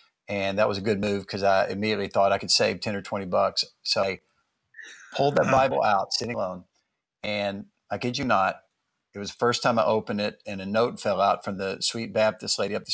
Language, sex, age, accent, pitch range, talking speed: English, male, 50-69, American, 100-115 Hz, 230 wpm